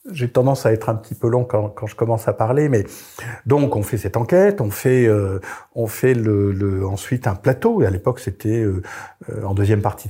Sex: male